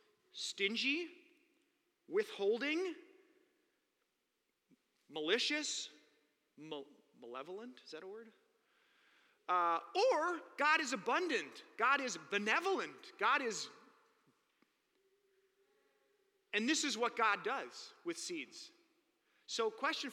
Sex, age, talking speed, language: male, 30-49, 85 wpm, English